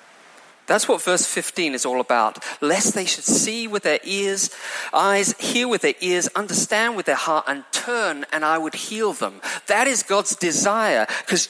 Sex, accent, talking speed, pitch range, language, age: male, British, 185 wpm, 200-260 Hz, English, 40-59